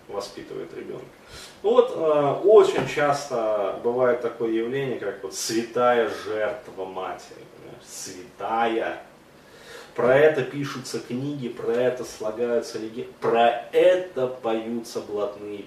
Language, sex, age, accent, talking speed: Russian, male, 30-49, native, 105 wpm